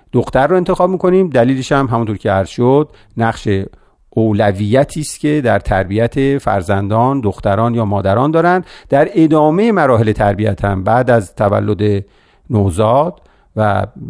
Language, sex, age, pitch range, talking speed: Persian, male, 50-69, 100-130 Hz, 130 wpm